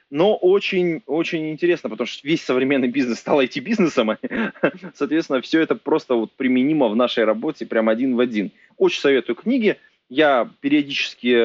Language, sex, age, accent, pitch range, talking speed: Russian, male, 30-49, native, 115-170 Hz, 150 wpm